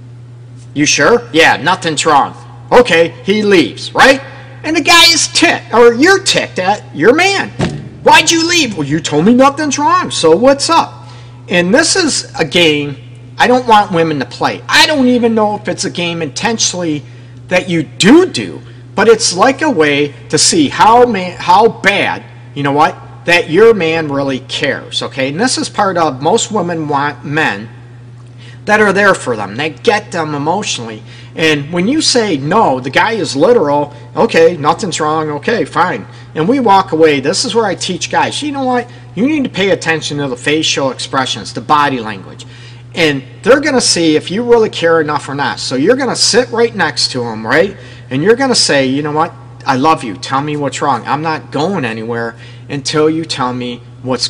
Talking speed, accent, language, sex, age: 195 wpm, American, English, male, 50-69